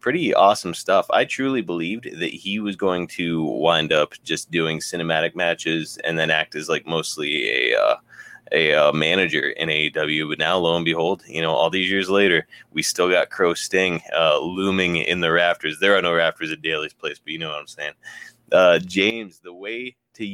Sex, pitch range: male, 85-110 Hz